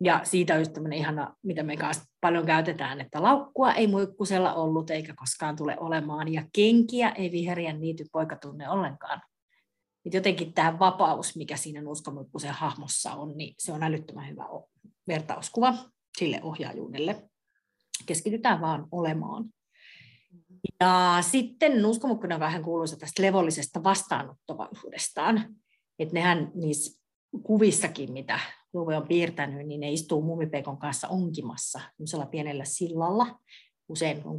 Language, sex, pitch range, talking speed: Finnish, female, 155-185 Hz, 120 wpm